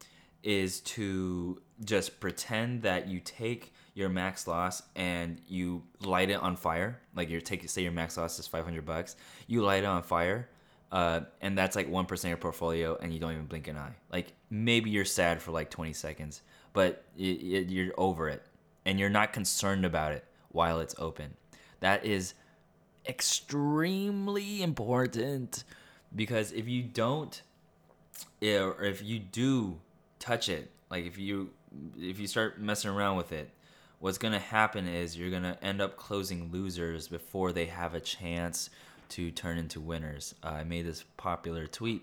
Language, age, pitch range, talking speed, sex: English, 20-39, 85-100 Hz, 165 wpm, male